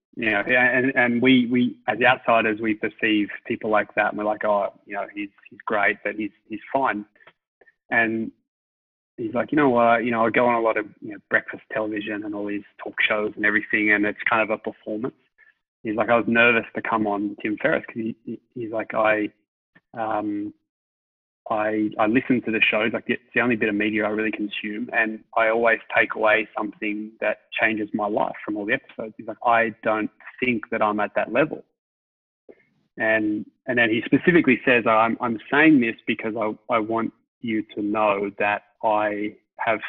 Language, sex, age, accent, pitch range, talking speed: English, male, 20-39, Australian, 105-120 Hz, 205 wpm